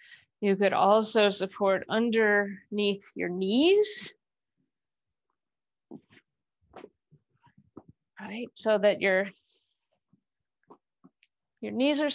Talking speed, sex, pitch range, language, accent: 70 wpm, female, 195-240 Hz, English, American